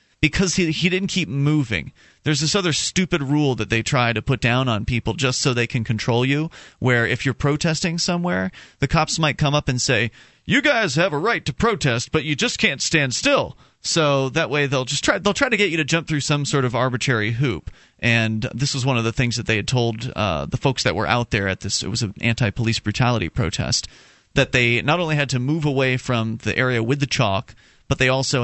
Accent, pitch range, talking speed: American, 115-150 Hz, 235 wpm